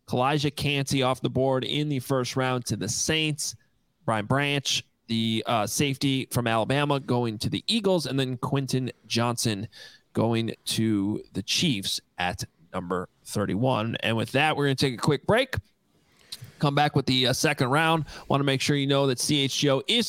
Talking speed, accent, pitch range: 180 wpm, American, 115-140 Hz